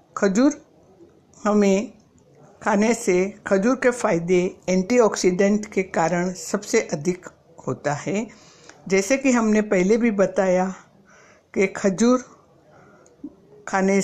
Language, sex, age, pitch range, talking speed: Hindi, female, 60-79, 175-225 Hz, 100 wpm